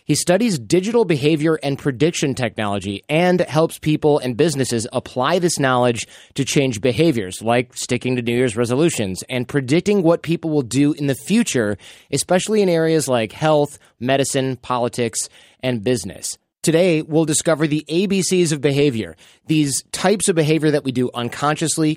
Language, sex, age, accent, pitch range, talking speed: English, male, 30-49, American, 125-160 Hz, 155 wpm